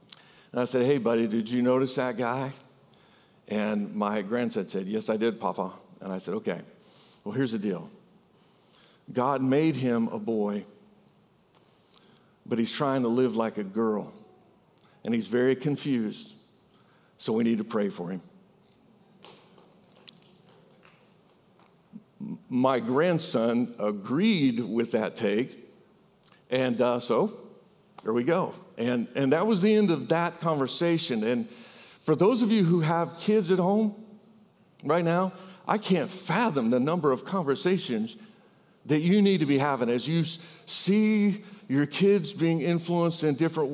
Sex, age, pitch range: male, 50-69, 130-195 Hz